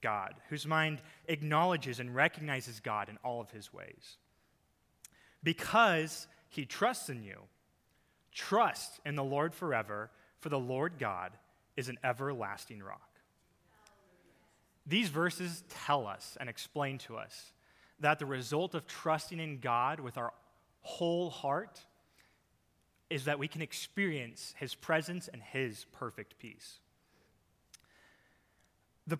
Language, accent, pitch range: English, American, 115-160 Hz